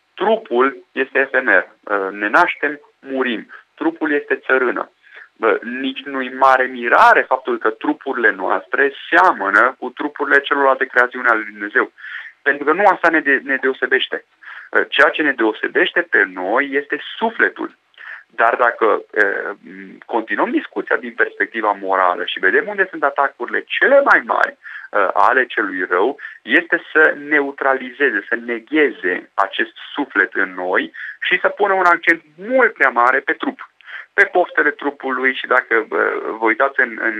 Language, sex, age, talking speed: Romanian, male, 30-49, 140 wpm